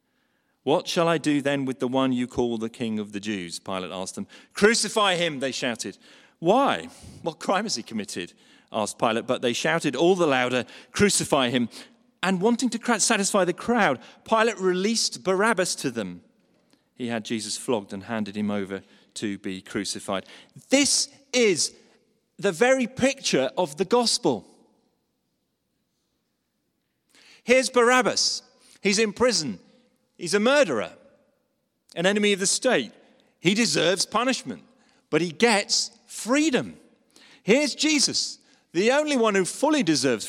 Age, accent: 40-59, British